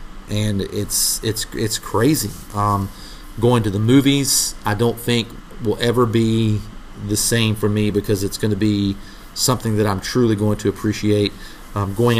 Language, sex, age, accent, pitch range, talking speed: English, male, 40-59, American, 105-115 Hz, 165 wpm